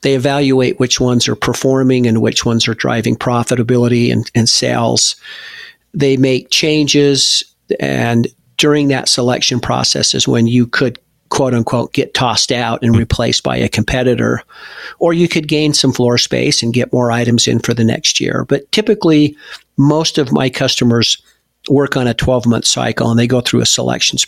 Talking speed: 175 wpm